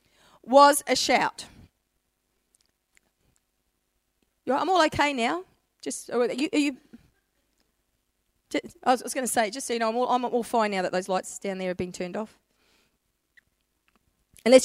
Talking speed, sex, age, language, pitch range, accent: 165 wpm, female, 40-59, English, 240-340 Hz, Australian